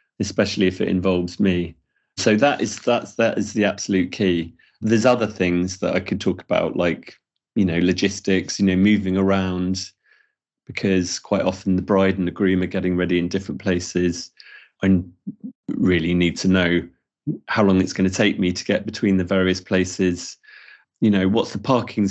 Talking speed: 180 wpm